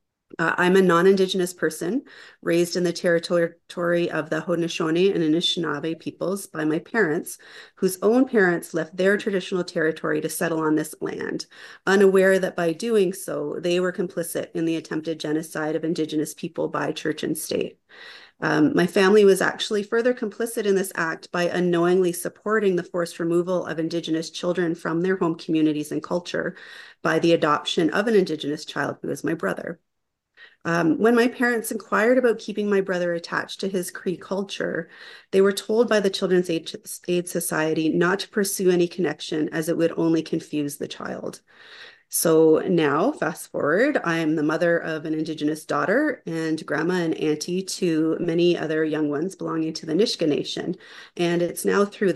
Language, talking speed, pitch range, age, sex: English, 170 wpm, 160-190 Hz, 30-49, female